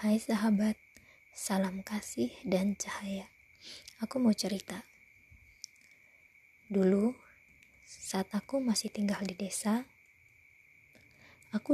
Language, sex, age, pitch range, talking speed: Indonesian, female, 20-39, 130-210 Hz, 85 wpm